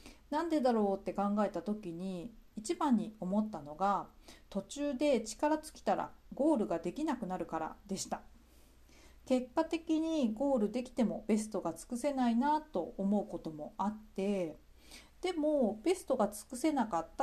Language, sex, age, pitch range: Japanese, female, 40-59, 195-285 Hz